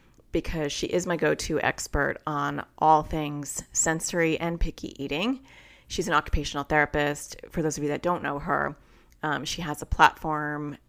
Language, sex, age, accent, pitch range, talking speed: English, female, 30-49, American, 145-190 Hz, 165 wpm